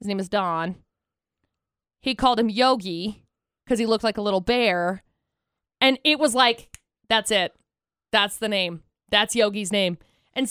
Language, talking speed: English, 160 wpm